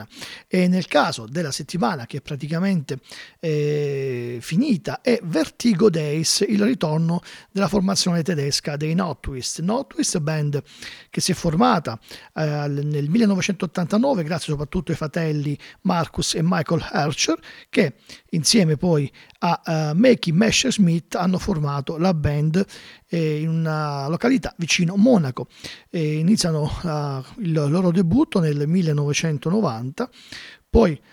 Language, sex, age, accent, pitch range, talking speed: Italian, male, 40-59, native, 150-195 Hz, 125 wpm